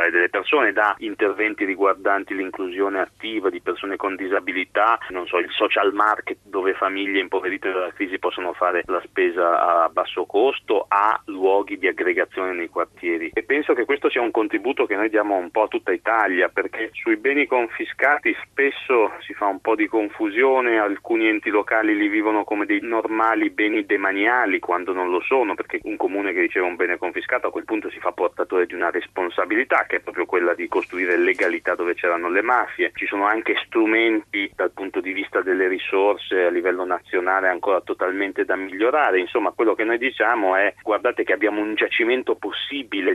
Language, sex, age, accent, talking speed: Italian, male, 30-49, native, 170 wpm